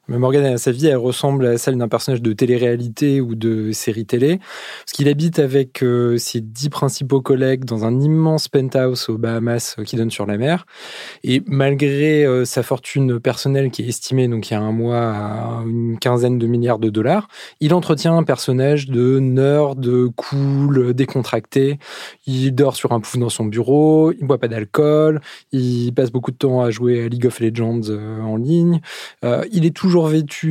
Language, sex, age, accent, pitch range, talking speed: French, male, 20-39, French, 120-145 Hz, 185 wpm